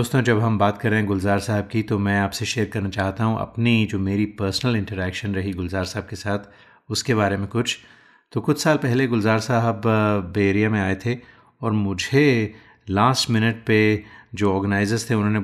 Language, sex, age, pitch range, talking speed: Hindi, male, 30-49, 100-115 Hz, 195 wpm